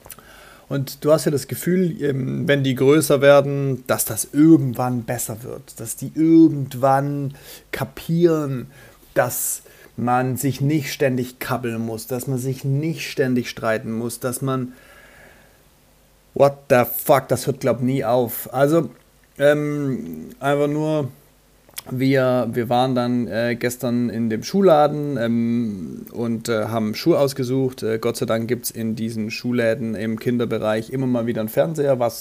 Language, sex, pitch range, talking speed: German, male, 120-140 Hz, 145 wpm